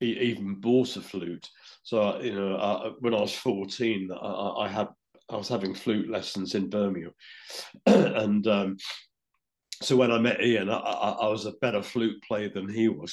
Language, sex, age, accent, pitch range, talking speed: English, male, 50-69, British, 95-115 Hz, 185 wpm